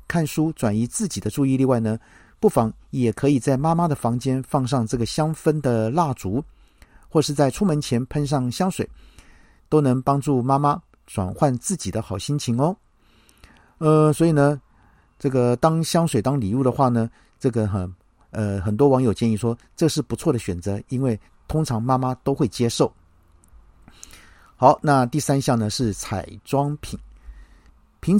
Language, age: Chinese, 50-69